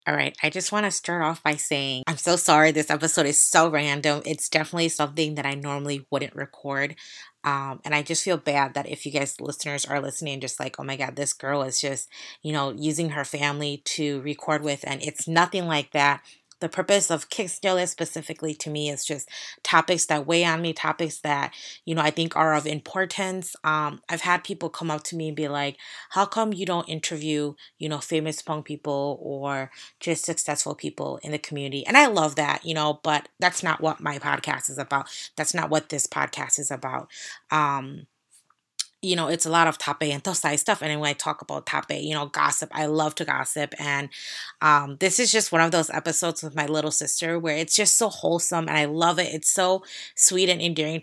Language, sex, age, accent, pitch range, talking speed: English, female, 30-49, American, 145-165 Hz, 220 wpm